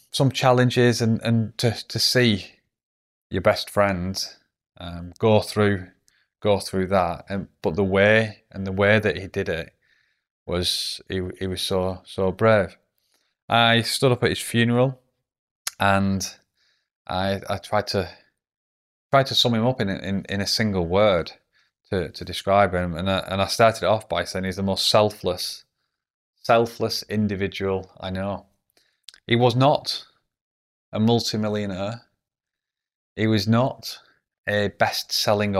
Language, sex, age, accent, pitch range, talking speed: English, male, 20-39, British, 95-115 Hz, 145 wpm